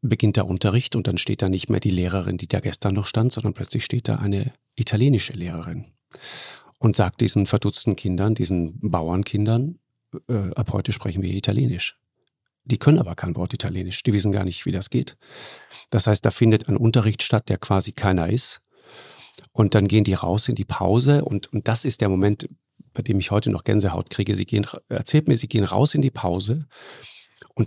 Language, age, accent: German, 40-59, German